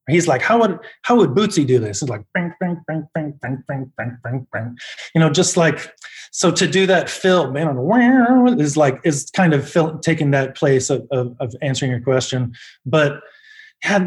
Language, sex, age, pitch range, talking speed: English, male, 20-39, 135-160 Hz, 200 wpm